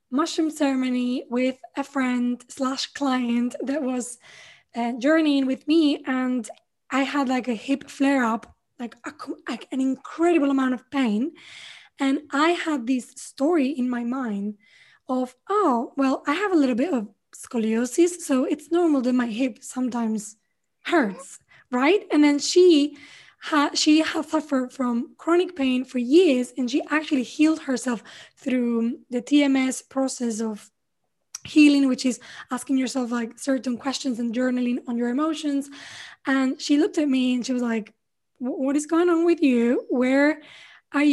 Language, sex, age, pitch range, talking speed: English, female, 10-29, 250-300 Hz, 155 wpm